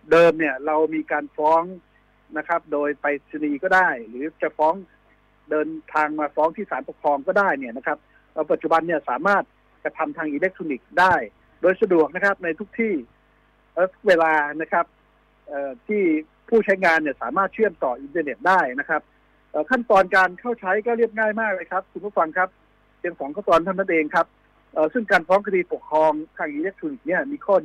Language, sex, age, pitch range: Thai, male, 60-79, 155-200 Hz